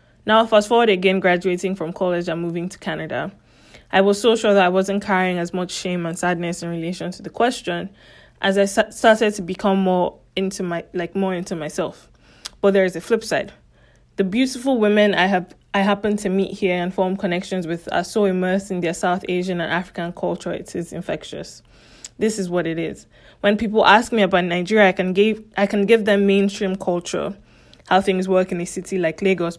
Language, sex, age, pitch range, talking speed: English, female, 20-39, 180-205 Hz, 205 wpm